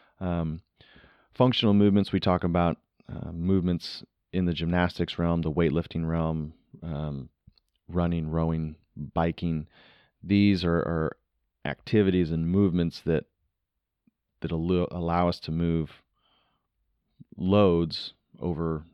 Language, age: English, 30-49